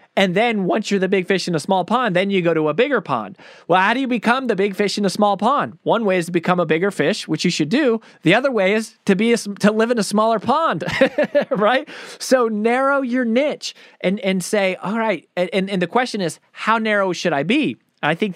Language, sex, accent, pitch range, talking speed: English, male, American, 170-215 Hz, 255 wpm